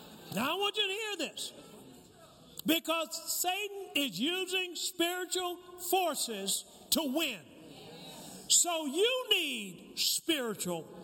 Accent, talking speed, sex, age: American, 105 wpm, male, 50-69